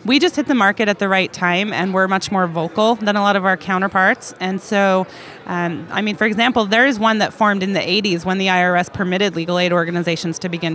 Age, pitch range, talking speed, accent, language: 30-49, 175-205 Hz, 245 wpm, American, English